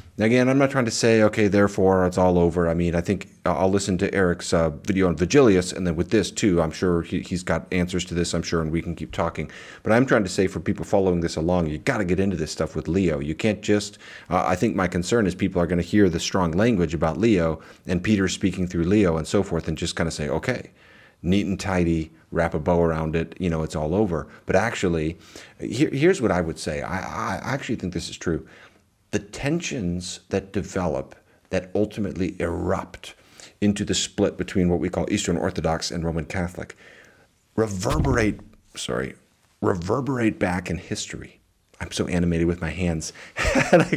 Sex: male